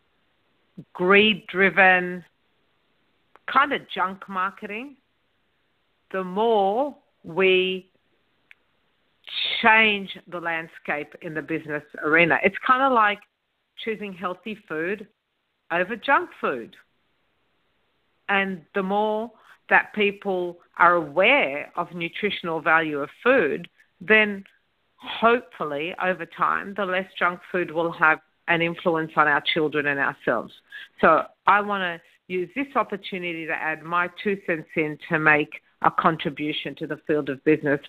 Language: English